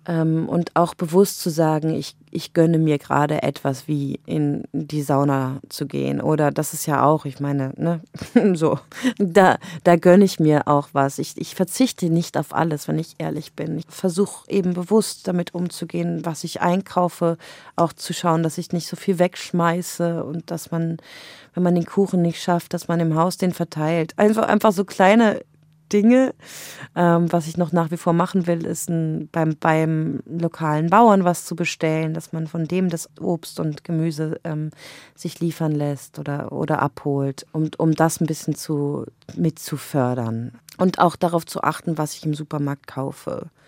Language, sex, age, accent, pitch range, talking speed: German, female, 30-49, German, 150-175 Hz, 180 wpm